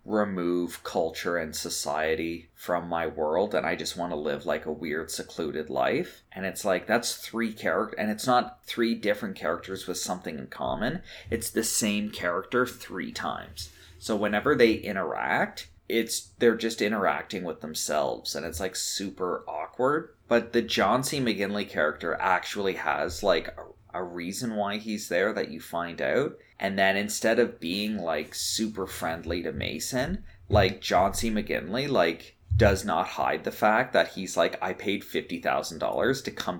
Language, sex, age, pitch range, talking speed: English, male, 30-49, 85-110 Hz, 165 wpm